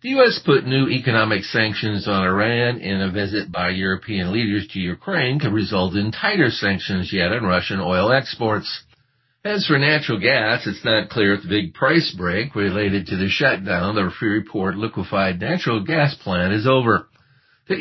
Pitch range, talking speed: 95-130 Hz, 175 wpm